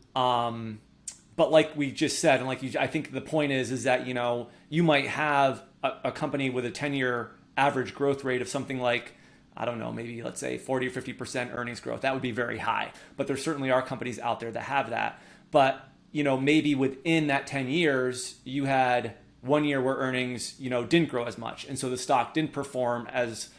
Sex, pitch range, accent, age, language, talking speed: male, 120-140 Hz, American, 30-49, English, 220 wpm